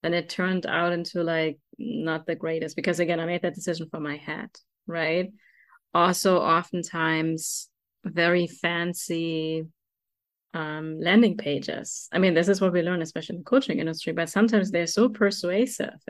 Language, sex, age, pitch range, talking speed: English, female, 20-39, 170-210 Hz, 160 wpm